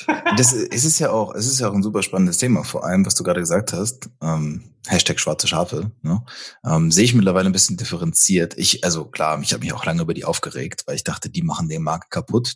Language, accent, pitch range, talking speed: German, German, 90-130 Hz, 250 wpm